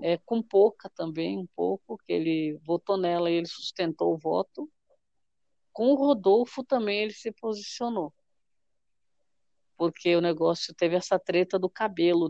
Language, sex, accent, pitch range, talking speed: Portuguese, female, Brazilian, 170-225 Hz, 145 wpm